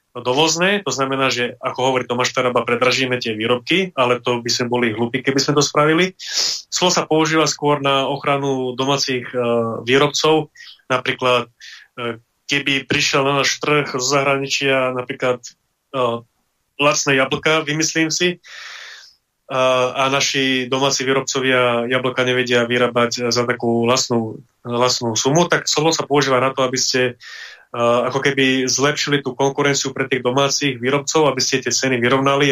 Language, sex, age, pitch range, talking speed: Slovak, male, 20-39, 125-145 Hz, 140 wpm